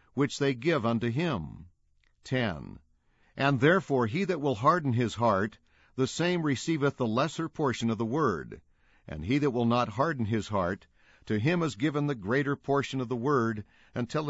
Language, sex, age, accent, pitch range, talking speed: English, male, 60-79, American, 105-140 Hz, 175 wpm